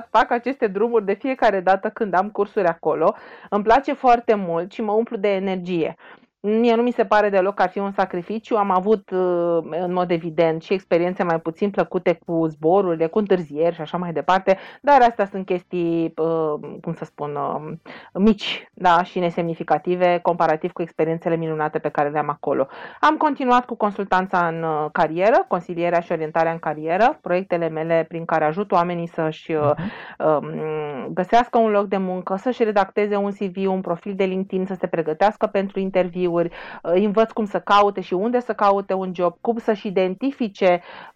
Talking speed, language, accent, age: 170 wpm, Romanian, native, 30-49